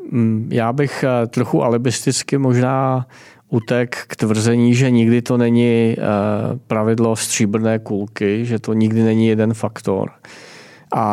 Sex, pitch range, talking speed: male, 105-115 Hz, 120 wpm